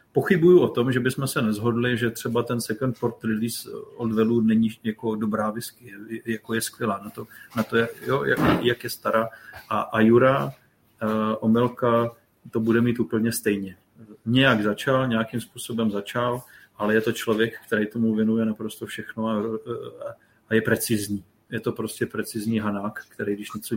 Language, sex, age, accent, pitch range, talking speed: Czech, male, 40-59, native, 110-120 Hz, 170 wpm